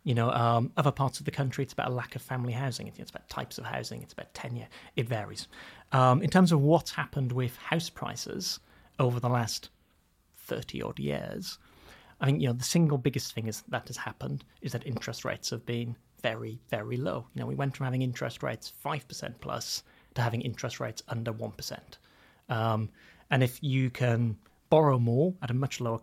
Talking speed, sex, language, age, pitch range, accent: 200 wpm, male, English, 30-49, 120-150 Hz, British